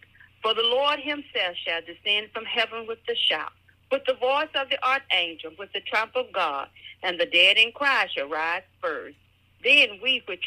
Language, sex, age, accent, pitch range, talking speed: English, female, 50-69, American, 185-285 Hz, 190 wpm